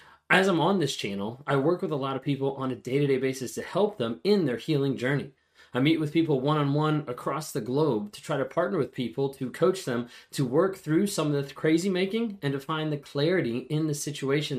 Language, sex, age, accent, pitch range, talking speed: English, male, 20-39, American, 135-160 Hz, 230 wpm